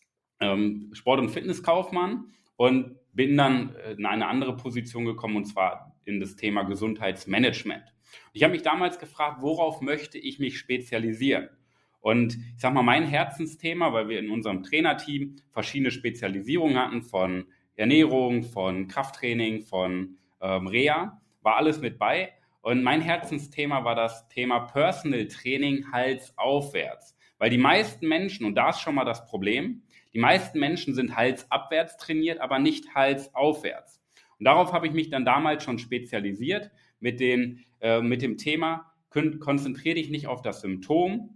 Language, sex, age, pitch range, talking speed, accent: German, male, 30-49, 120-155 Hz, 150 wpm, German